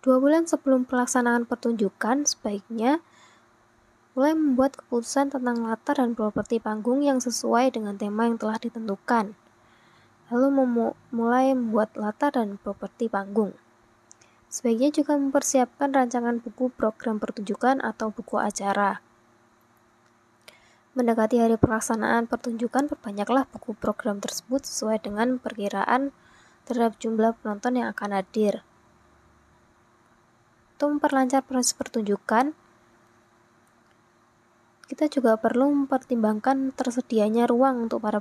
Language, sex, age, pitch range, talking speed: Indonesian, female, 20-39, 210-255 Hz, 105 wpm